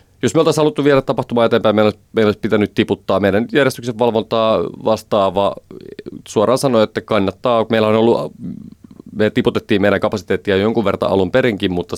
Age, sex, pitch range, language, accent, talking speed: 30-49, male, 90-110 Hz, Finnish, native, 155 wpm